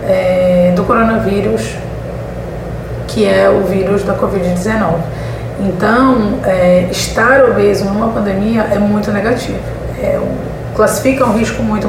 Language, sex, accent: Portuguese, female, Brazilian